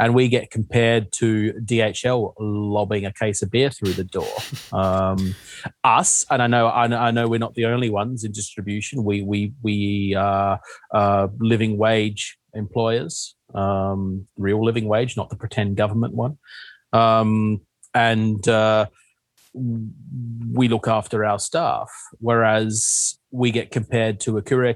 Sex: male